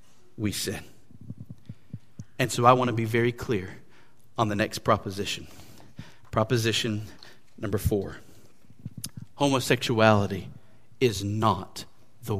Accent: American